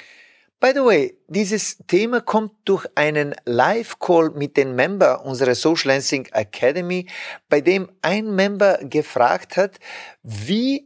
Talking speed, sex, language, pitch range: 125 wpm, male, German, 135-200 Hz